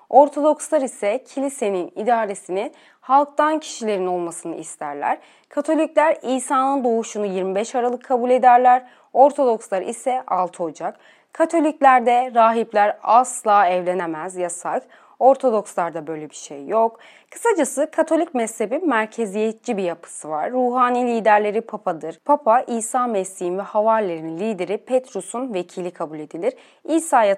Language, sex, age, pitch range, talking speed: Turkish, female, 30-49, 190-270 Hz, 105 wpm